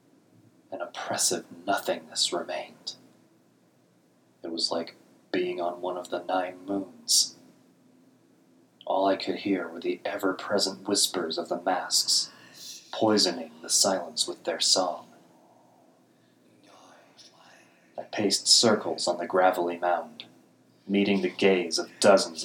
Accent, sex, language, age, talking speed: American, male, English, 30-49, 115 wpm